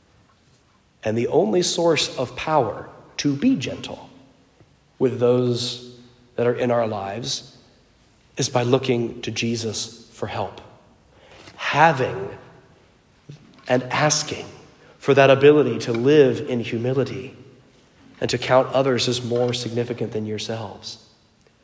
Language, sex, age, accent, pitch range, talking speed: English, male, 40-59, American, 120-150 Hz, 115 wpm